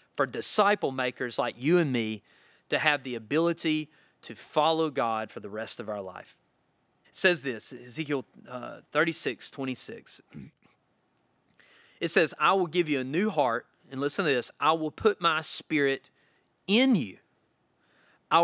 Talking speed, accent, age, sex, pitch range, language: 160 wpm, American, 30-49, male, 130-185 Hz, English